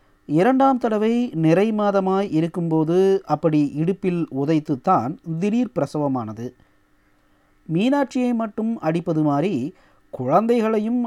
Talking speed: 70 wpm